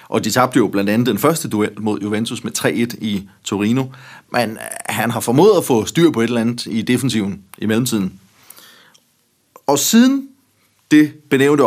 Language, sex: Danish, male